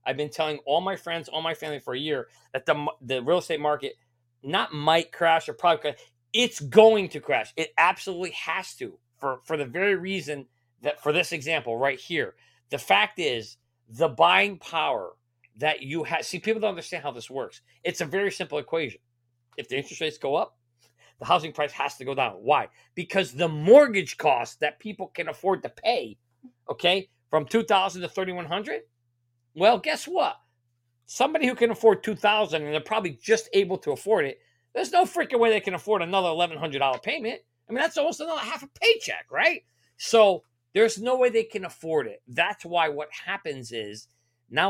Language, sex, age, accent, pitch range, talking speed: English, male, 40-59, American, 135-205 Hz, 190 wpm